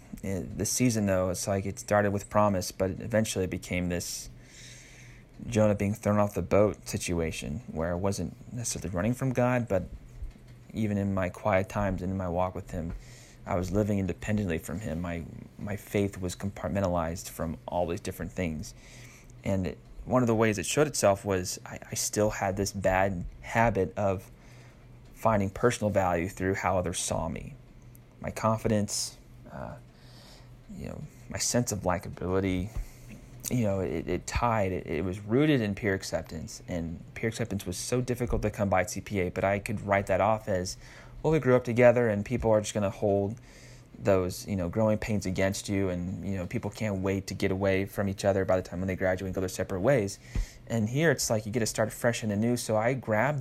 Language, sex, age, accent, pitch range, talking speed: English, male, 30-49, American, 95-115 Hz, 200 wpm